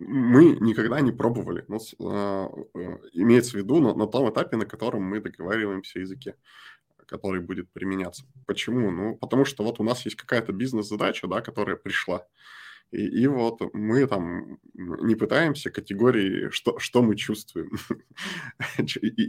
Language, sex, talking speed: Russian, male, 135 wpm